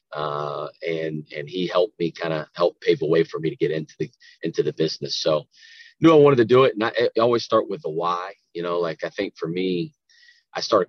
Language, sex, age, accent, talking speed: English, male, 30-49, American, 250 wpm